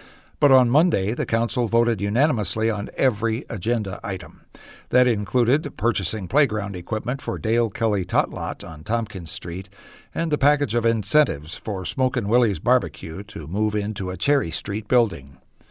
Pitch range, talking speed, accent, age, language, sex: 100-125 Hz, 155 wpm, American, 60-79, English, male